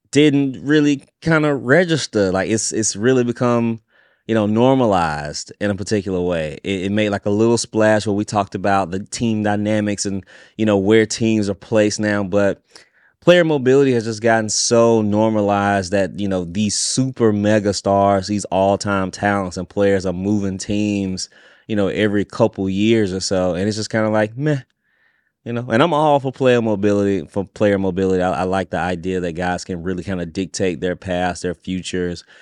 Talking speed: 190 wpm